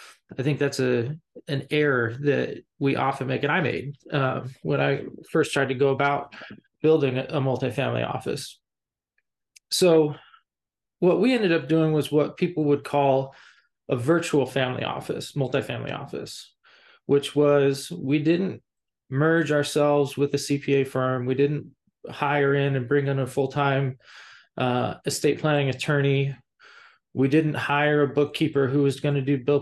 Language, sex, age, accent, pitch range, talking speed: English, male, 20-39, American, 135-150 Hz, 155 wpm